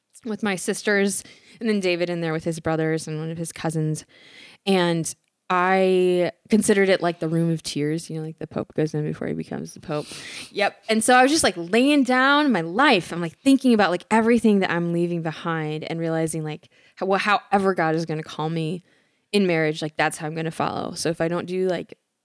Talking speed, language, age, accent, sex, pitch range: 230 wpm, English, 10-29, American, female, 165-210 Hz